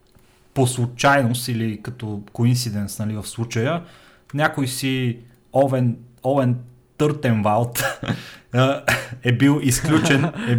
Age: 30-49